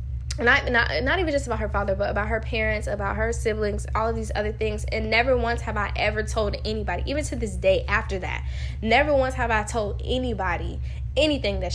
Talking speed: 215 wpm